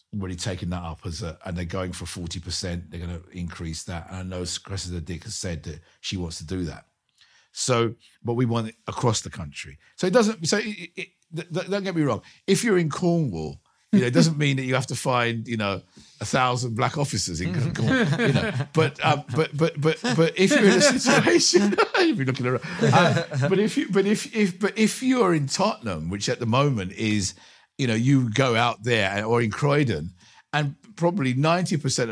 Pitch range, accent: 100-150 Hz, British